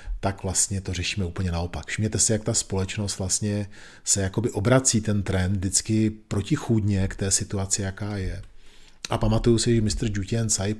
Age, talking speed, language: 40-59, 170 wpm, Czech